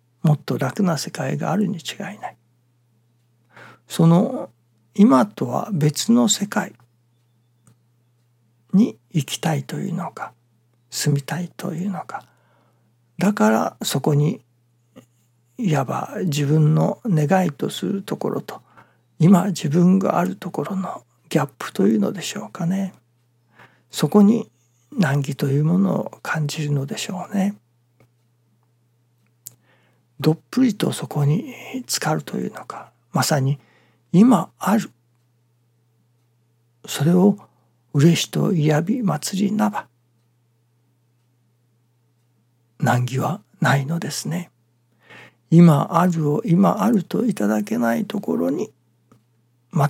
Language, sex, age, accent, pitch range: Japanese, male, 60-79, native, 120-185 Hz